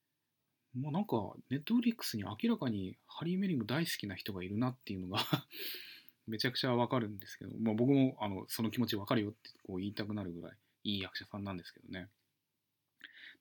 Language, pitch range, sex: Japanese, 105-160 Hz, male